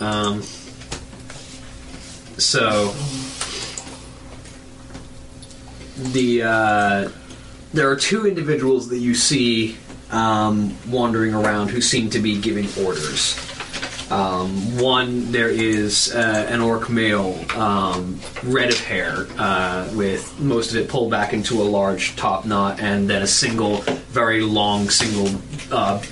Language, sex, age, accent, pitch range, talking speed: English, male, 20-39, American, 100-120 Hz, 120 wpm